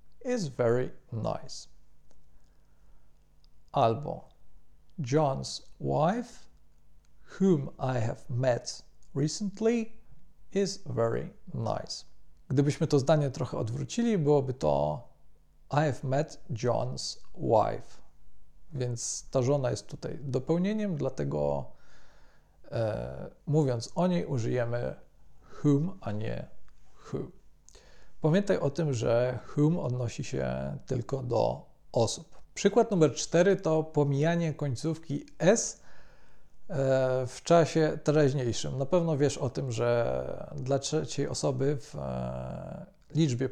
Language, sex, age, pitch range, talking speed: Polish, male, 40-59, 120-155 Hz, 100 wpm